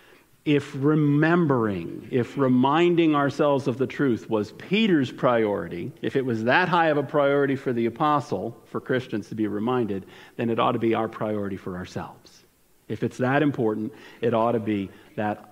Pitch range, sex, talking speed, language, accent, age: 125-190 Hz, male, 175 wpm, English, American, 50-69